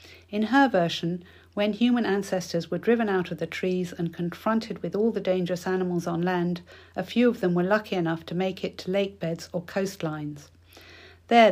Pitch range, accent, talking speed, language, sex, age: 170-200 Hz, British, 195 wpm, English, female, 50-69